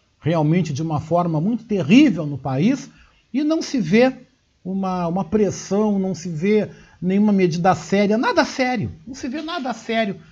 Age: 60-79